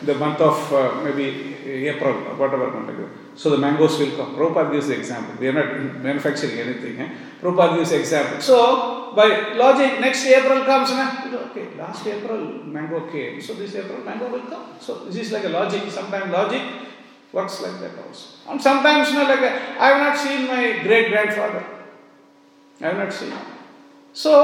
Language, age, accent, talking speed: English, 50-69, Indian, 190 wpm